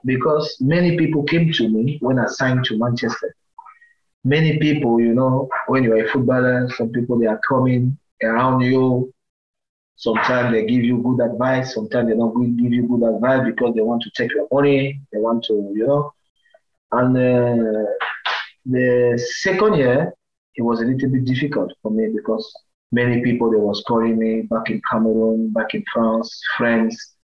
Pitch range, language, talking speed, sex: 115-150 Hz, English, 170 wpm, male